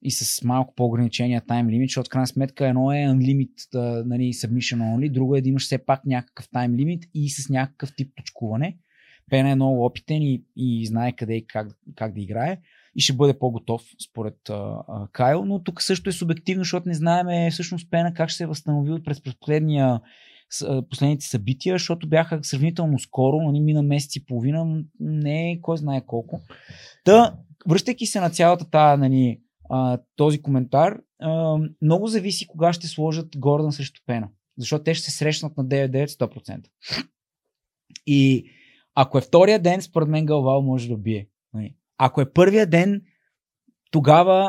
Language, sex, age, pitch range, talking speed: Bulgarian, male, 20-39, 125-165 Hz, 165 wpm